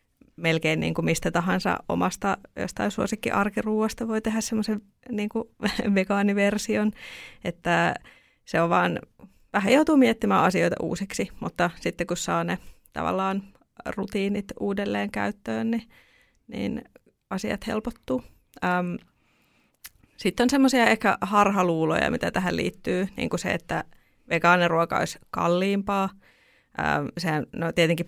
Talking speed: 105 wpm